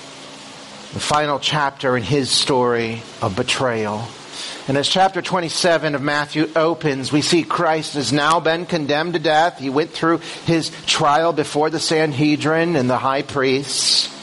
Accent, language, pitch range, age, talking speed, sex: American, English, 140-175 Hz, 40-59, 150 wpm, male